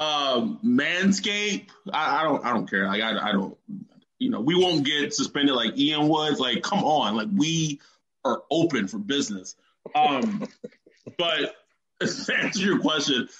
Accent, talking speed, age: American, 165 wpm, 20-39